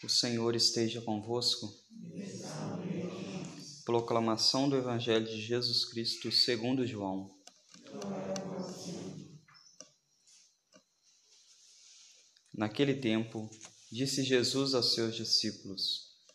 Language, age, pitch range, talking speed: Portuguese, 20-39, 105-125 Hz, 70 wpm